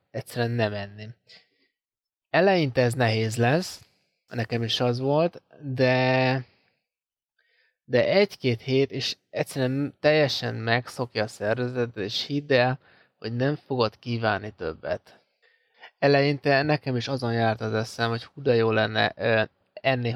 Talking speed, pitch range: 125 wpm, 120-140 Hz